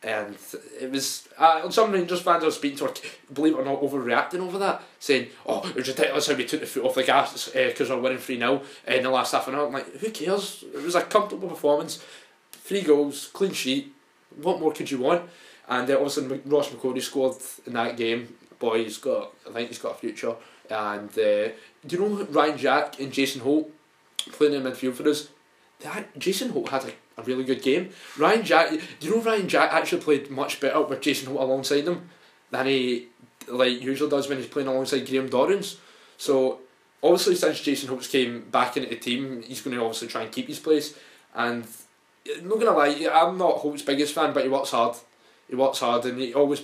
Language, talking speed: English, 225 wpm